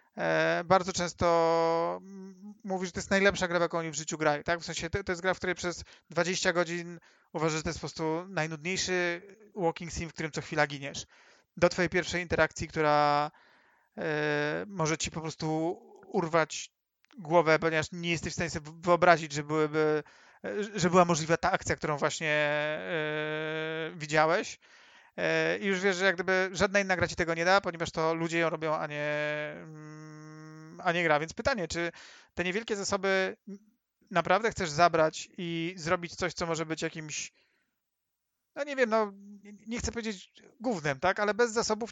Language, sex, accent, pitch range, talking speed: Polish, male, native, 160-190 Hz, 170 wpm